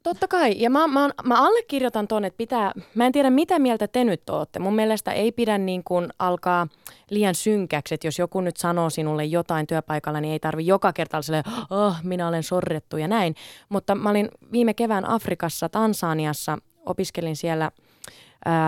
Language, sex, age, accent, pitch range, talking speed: Finnish, female, 20-39, native, 160-215 Hz, 180 wpm